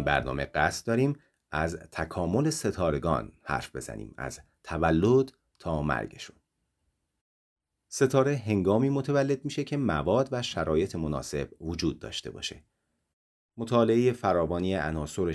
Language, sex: Persian, male